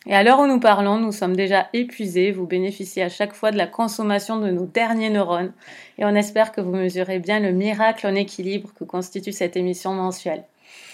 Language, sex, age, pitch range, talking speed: French, female, 30-49, 185-225 Hz, 210 wpm